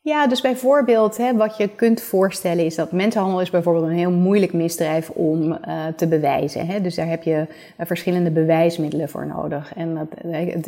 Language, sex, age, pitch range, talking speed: Dutch, female, 30-49, 165-185 Hz, 190 wpm